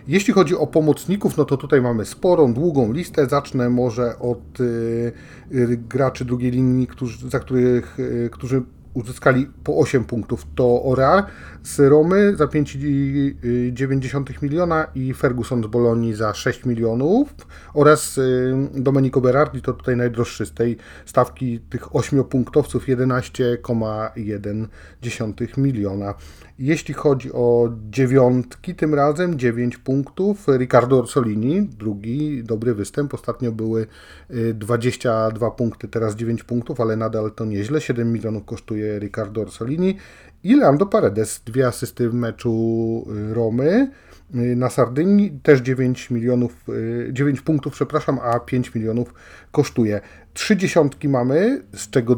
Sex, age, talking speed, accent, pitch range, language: male, 30-49, 125 wpm, native, 115-140 Hz, Polish